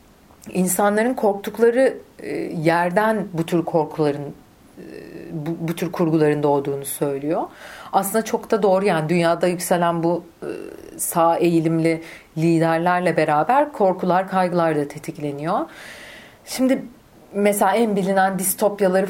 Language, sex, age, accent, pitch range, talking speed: Turkish, female, 40-59, native, 155-210 Hz, 100 wpm